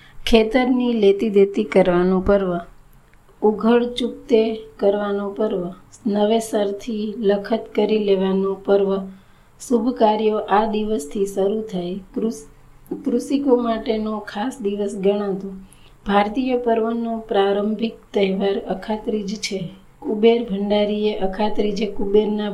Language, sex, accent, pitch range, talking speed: Gujarati, female, native, 200-225 Hz, 95 wpm